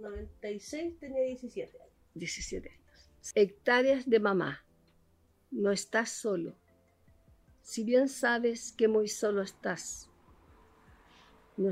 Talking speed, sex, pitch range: 100 wpm, female, 190-240 Hz